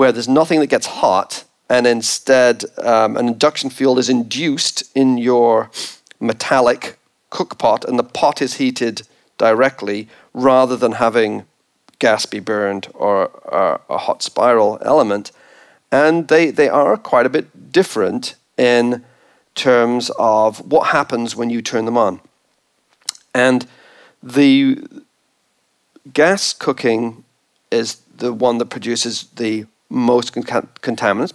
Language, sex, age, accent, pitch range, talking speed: English, male, 40-59, British, 115-140 Hz, 130 wpm